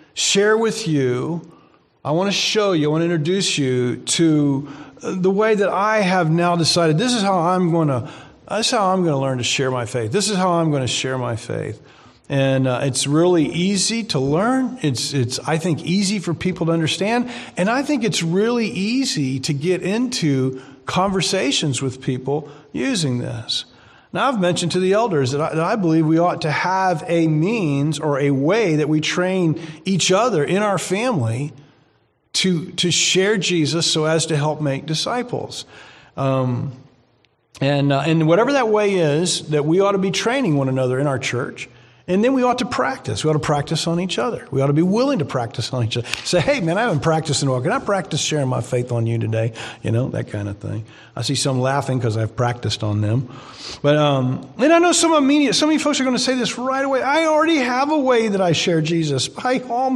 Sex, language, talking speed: male, English, 220 wpm